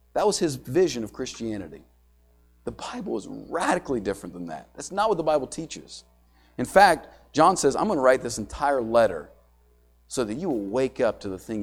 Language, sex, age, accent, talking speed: English, male, 40-59, American, 195 wpm